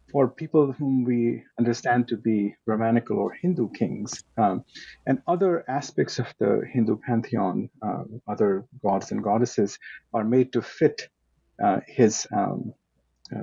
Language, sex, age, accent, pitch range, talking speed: English, male, 50-69, Indian, 120-170 Hz, 145 wpm